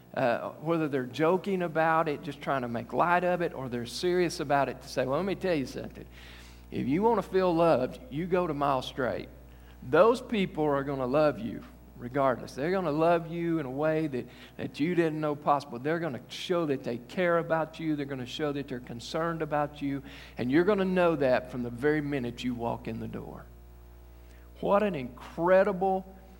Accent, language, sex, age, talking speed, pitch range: American, English, male, 50-69, 215 wpm, 120-160 Hz